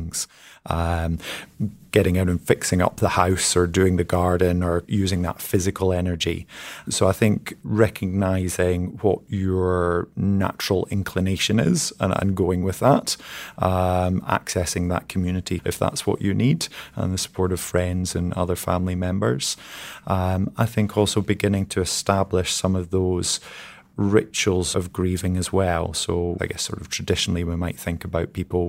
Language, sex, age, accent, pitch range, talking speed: English, male, 30-49, British, 90-100 Hz, 155 wpm